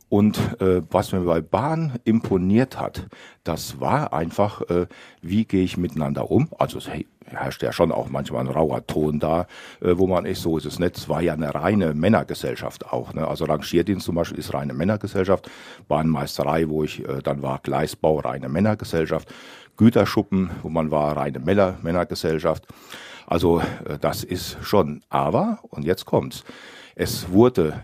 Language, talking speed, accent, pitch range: German, 165 wpm, German, 75-100 Hz